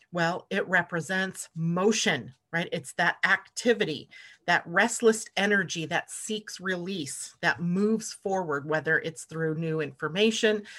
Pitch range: 160-210 Hz